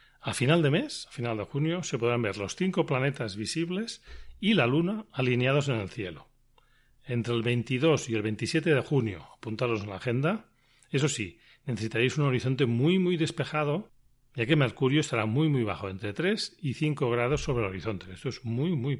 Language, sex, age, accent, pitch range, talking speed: Spanish, male, 40-59, Spanish, 115-150 Hz, 195 wpm